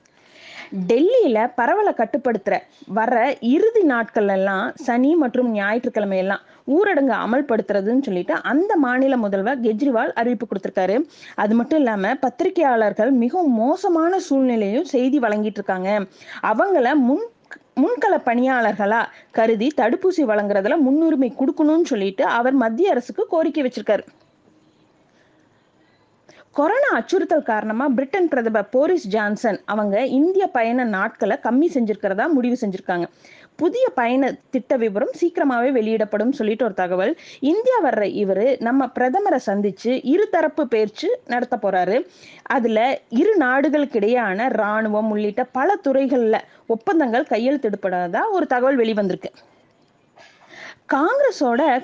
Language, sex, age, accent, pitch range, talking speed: Tamil, female, 20-39, native, 215-300 Hz, 100 wpm